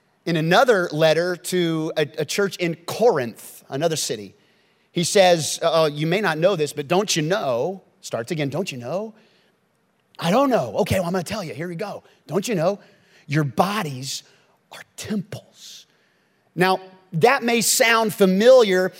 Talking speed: 160 wpm